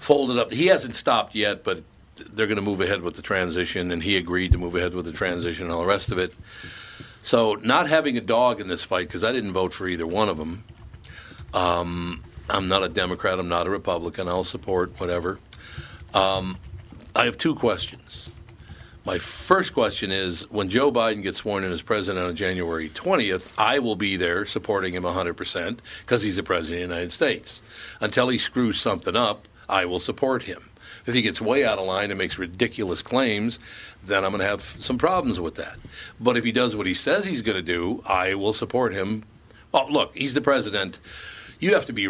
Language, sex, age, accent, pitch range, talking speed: English, male, 60-79, American, 90-105 Hz, 210 wpm